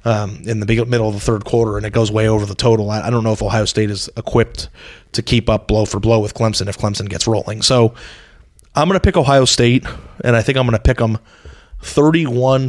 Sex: male